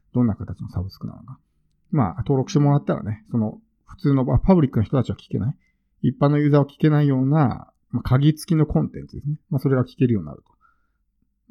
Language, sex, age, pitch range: Japanese, male, 50-69, 105-145 Hz